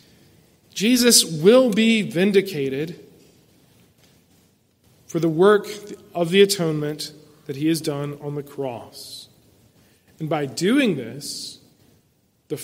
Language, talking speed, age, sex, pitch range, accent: English, 105 wpm, 40-59, male, 155-215 Hz, American